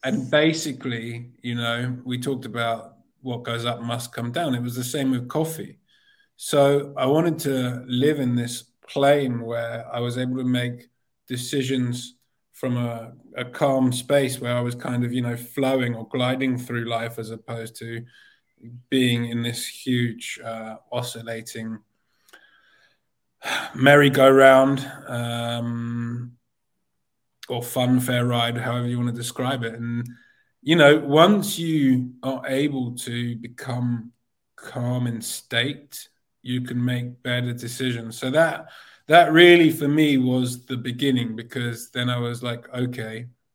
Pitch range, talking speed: 120-135 Hz, 145 wpm